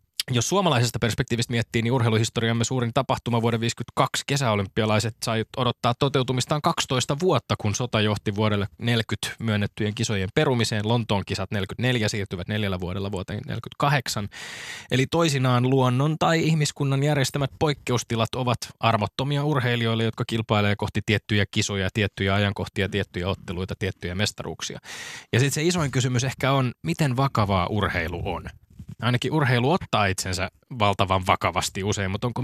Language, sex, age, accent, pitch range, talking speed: Finnish, male, 20-39, native, 100-130 Hz, 140 wpm